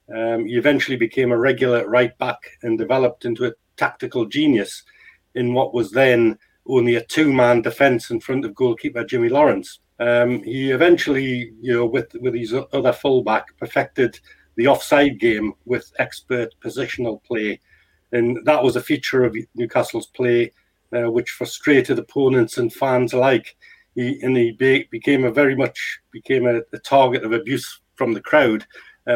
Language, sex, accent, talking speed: English, male, British, 165 wpm